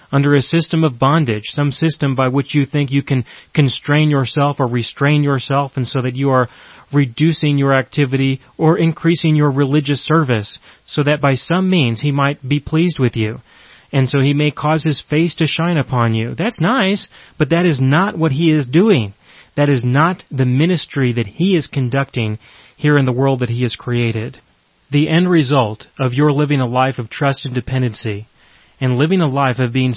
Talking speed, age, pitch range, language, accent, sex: 195 wpm, 30-49, 120-150 Hz, English, American, male